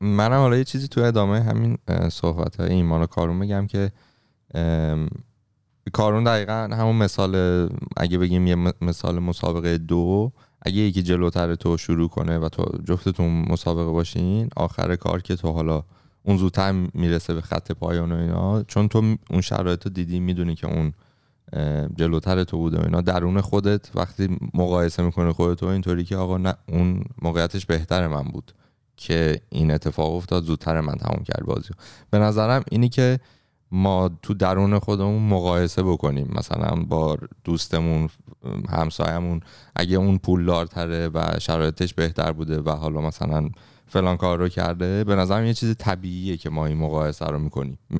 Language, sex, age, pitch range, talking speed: Persian, male, 20-39, 85-100 Hz, 160 wpm